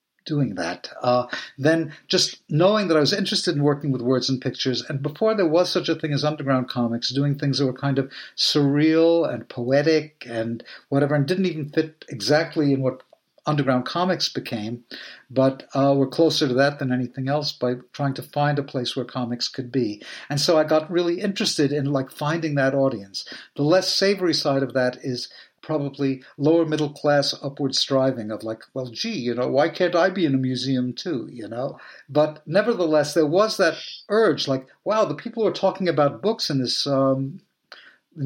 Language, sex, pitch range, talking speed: English, male, 130-160 Hz, 195 wpm